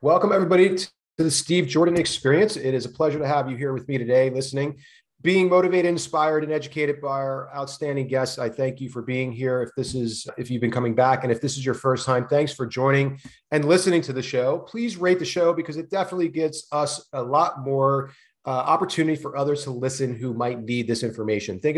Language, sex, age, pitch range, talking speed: English, male, 30-49, 125-160 Hz, 225 wpm